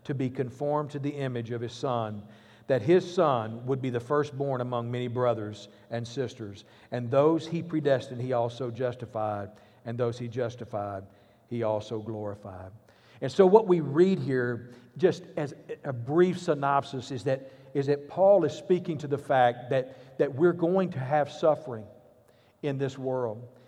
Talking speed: 165 wpm